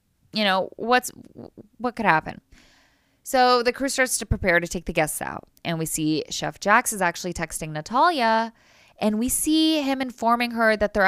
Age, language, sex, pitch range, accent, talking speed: 10-29, English, female, 165-230 Hz, American, 185 wpm